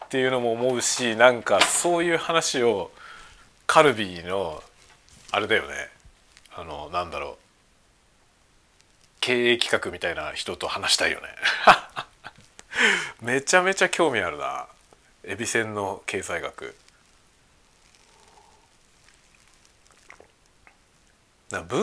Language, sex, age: Japanese, male, 40-59